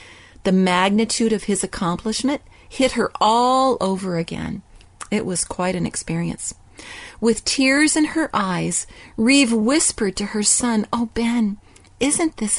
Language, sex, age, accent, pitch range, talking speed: English, female, 40-59, American, 185-255 Hz, 140 wpm